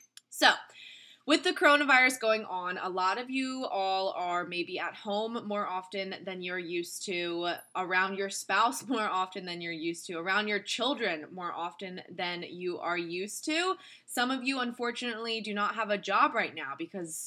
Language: English